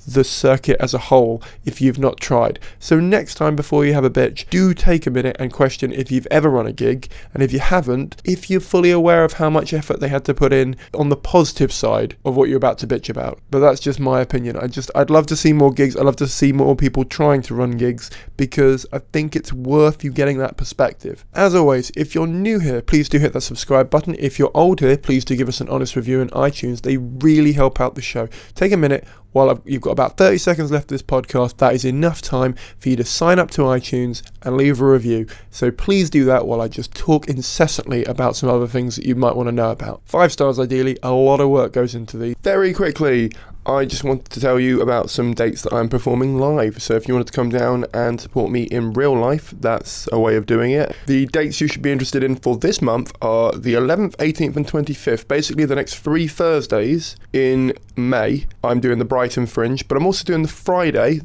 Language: English